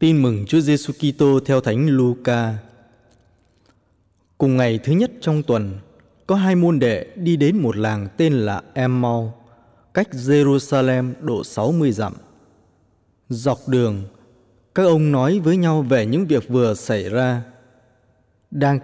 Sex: male